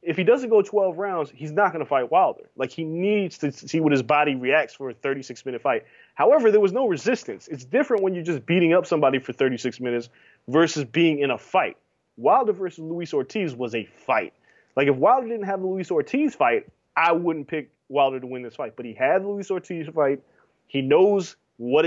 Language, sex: English, male